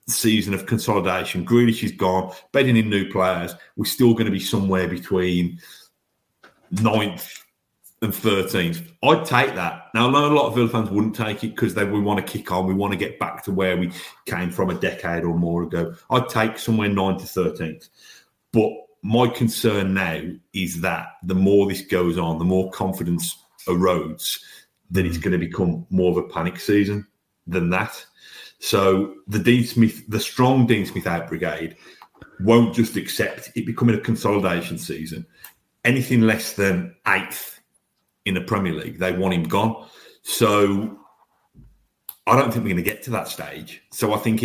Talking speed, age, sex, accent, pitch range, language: 180 wpm, 40-59, male, British, 90-110 Hz, English